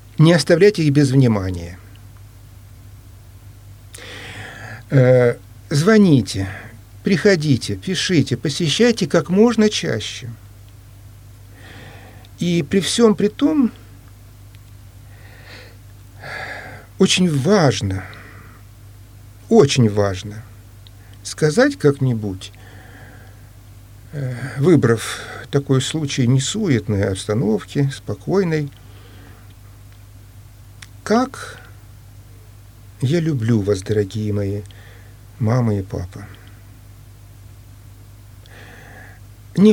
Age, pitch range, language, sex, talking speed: 50-69, 100-150 Hz, Russian, male, 60 wpm